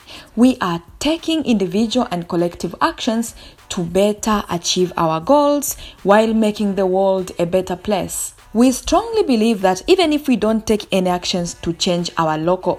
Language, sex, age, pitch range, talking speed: English, female, 20-39, 170-225 Hz, 160 wpm